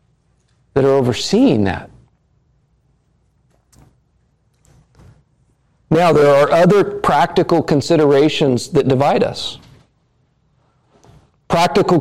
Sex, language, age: male, English, 40-59